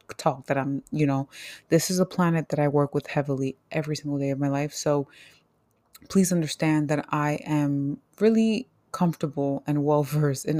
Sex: female